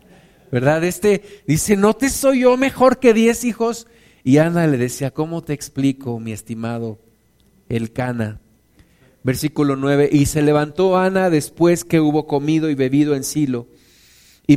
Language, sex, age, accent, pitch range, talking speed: Spanish, male, 50-69, Mexican, 140-190 Hz, 150 wpm